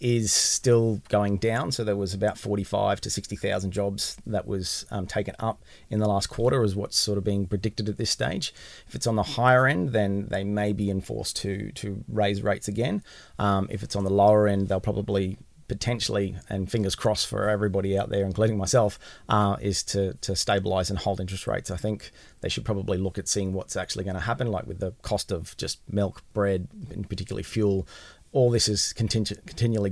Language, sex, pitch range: English, male, 95-105 Hz